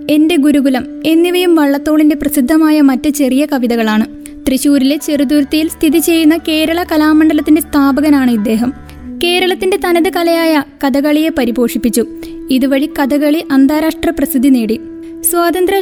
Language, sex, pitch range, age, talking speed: Malayalam, female, 270-320 Hz, 20-39, 100 wpm